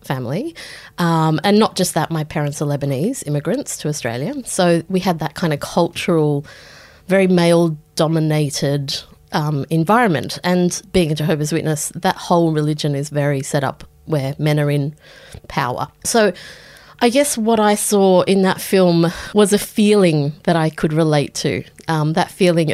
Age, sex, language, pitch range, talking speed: 30-49, female, English, 150-195 Hz, 160 wpm